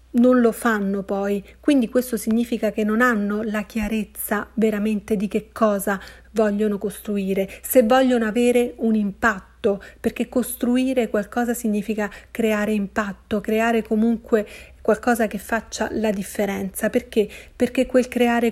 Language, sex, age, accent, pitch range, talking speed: Italian, female, 40-59, native, 205-240 Hz, 130 wpm